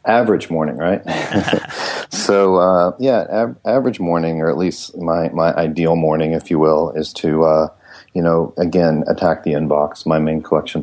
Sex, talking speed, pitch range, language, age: male, 170 wpm, 75-85 Hz, English, 40-59